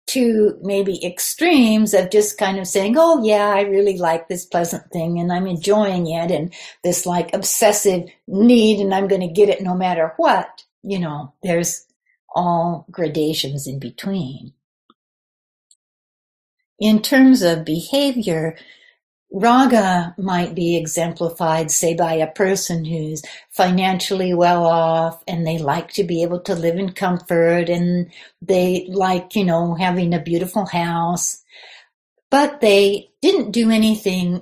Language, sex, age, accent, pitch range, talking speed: English, female, 60-79, American, 170-210 Hz, 140 wpm